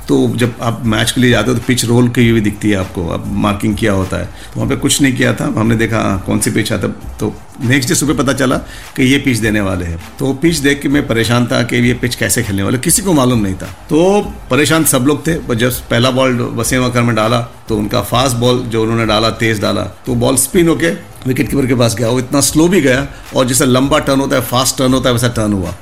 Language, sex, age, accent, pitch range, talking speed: Hindi, male, 50-69, native, 110-135 Hz, 260 wpm